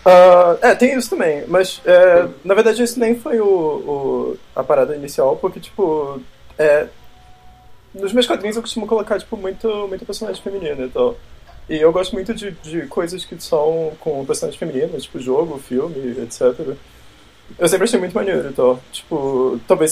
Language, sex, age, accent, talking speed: Portuguese, male, 20-39, Brazilian, 170 wpm